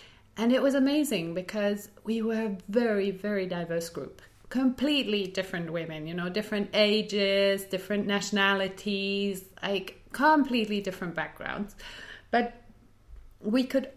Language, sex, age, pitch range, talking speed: English, female, 30-49, 180-230 Hz, 120 wpm